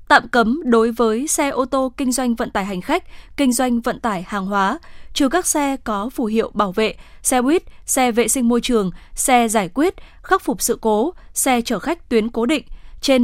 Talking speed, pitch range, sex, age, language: 220 wpm, 230-275 Hz, female, 10-29, Vietnamese